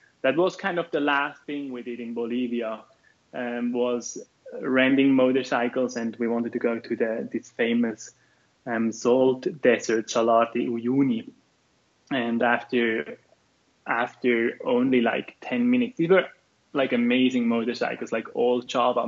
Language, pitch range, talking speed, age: English, 120-140 Hz, 140 wpm, 20-39